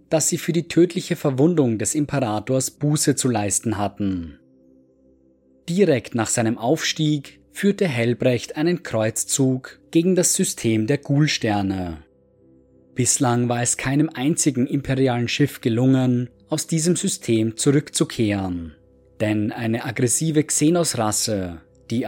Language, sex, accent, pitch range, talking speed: German, male, German, 105-145 Hz, 115 wpm